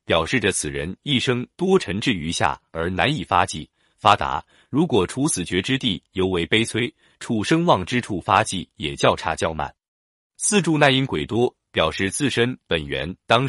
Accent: native